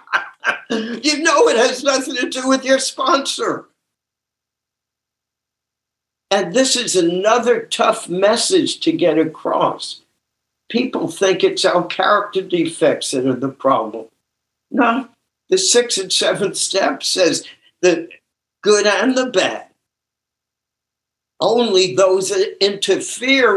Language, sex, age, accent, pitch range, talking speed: English, male, 60-79, American, 165-270 Hz, 115 wpm